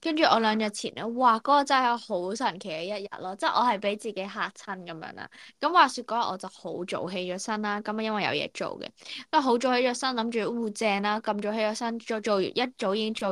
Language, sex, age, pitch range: Chinese, female, 10-29, 195-275 Hz